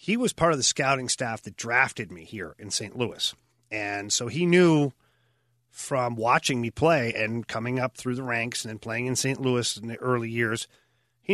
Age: 40-59